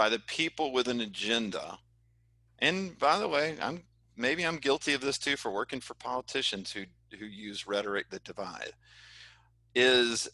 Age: 40-59